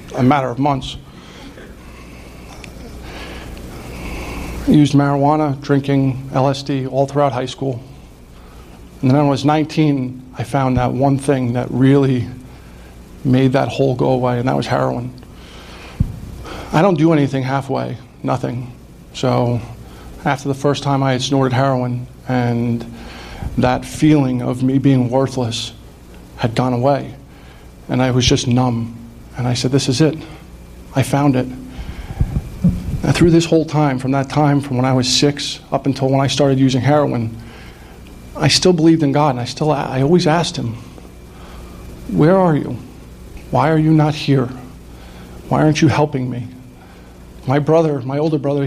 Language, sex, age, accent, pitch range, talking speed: English, male, 50-69, American, 115-145 Hz, 150 wpm